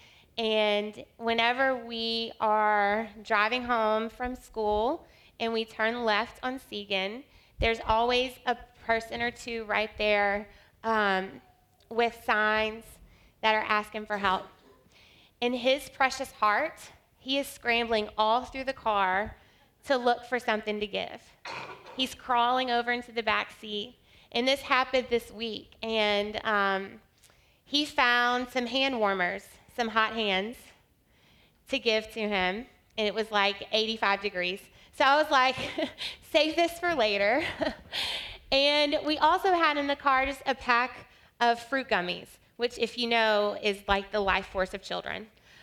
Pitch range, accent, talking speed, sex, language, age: 210-255 Hz, American, 145 wpm, female, English, 20-39